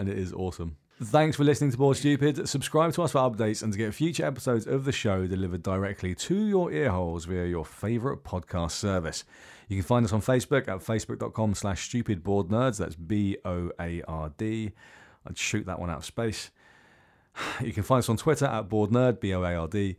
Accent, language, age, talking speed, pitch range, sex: British, English, 30-49, 190 wpm, 85-120 Hz, male